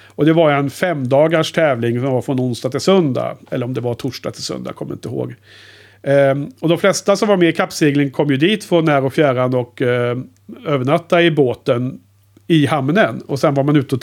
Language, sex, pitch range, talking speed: Swedish, male, 120-160 Hz, 220 wpm